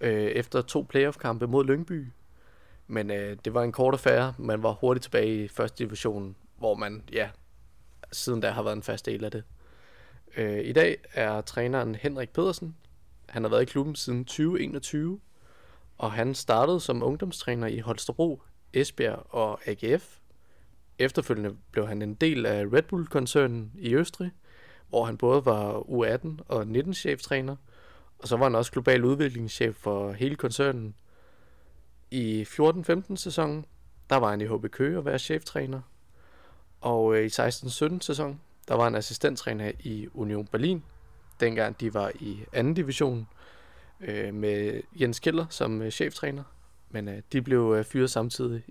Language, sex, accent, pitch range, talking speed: Danish, male, native, 105-140 Hz, 150 wpm